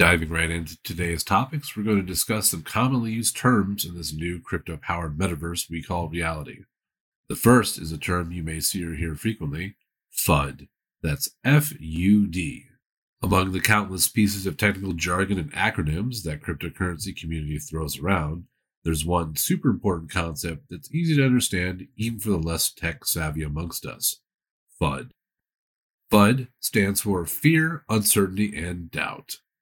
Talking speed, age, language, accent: 150 wpm, 40-59, English, American